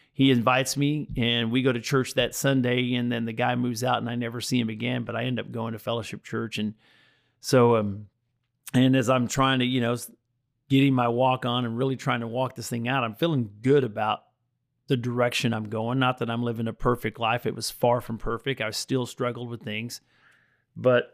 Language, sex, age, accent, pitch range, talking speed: English, male, 40-59, American, 115-130 Hz, 220 wpm